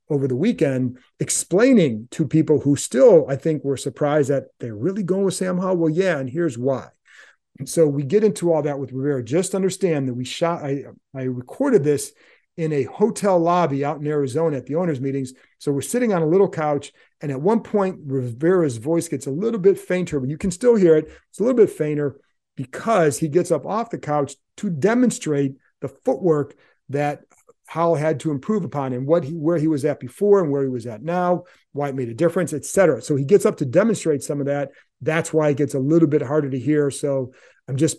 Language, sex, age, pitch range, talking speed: English, male, 40-59, 140-175 Hz, 225 wpm